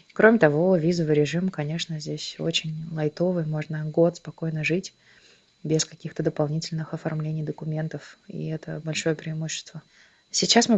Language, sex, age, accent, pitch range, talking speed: Russian, female, 20-39, native, 155-185 Hz, 130 wpm